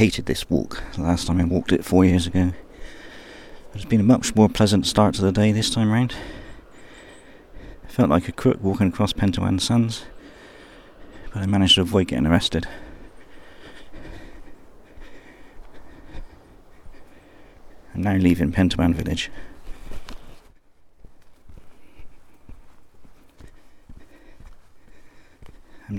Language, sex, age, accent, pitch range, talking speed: English, male, 50-69, British, 85-105 Hz, 110 wpm